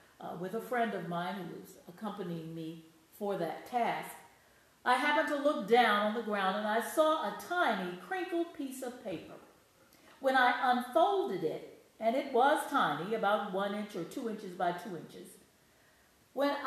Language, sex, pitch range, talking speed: English, female, 195-275 Hz, 175 wpm